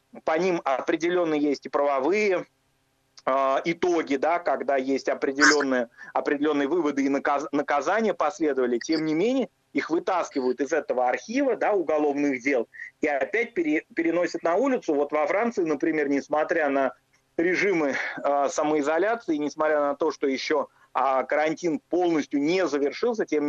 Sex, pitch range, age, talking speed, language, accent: male, 140-175 Hz, 30-49, 140 wpm, Russian, native